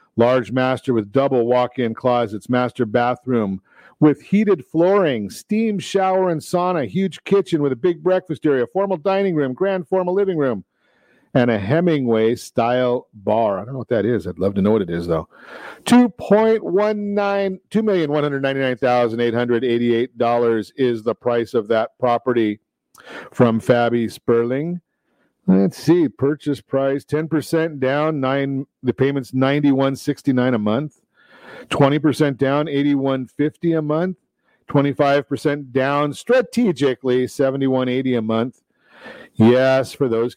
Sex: male